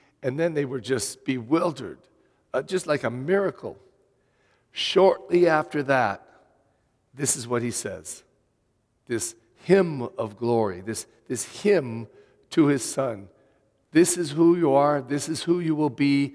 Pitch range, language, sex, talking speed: 125-155 Hz, English, male, 145 wpm